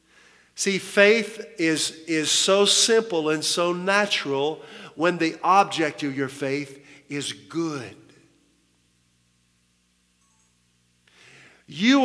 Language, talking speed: English, 90 wpm